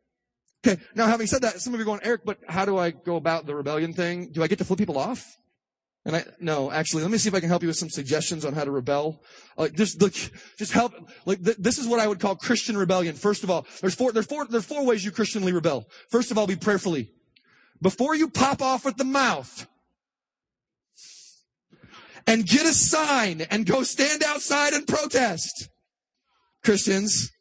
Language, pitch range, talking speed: English, 185-265 Hz, 215 wpm